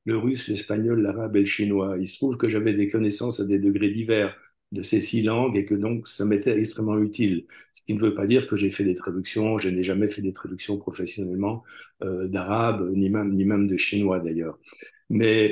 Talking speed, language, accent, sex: 220 wpm, French, French, male